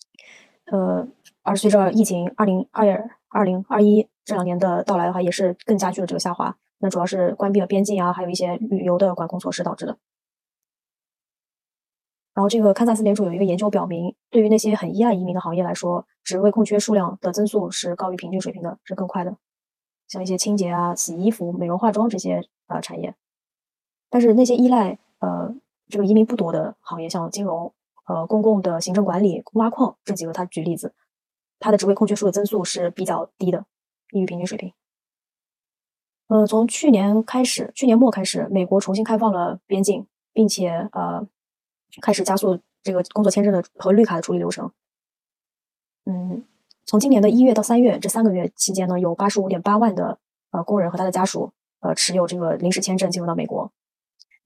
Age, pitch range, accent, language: 20-39, 180-215 Hz, native, Chinese